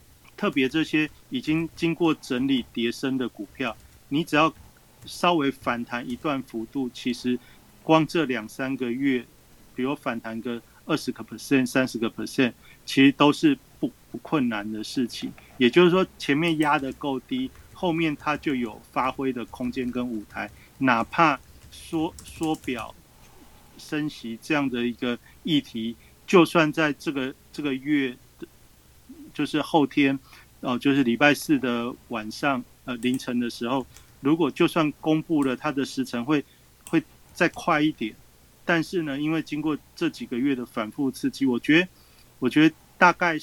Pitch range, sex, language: 120-155 Hz, male, Chinese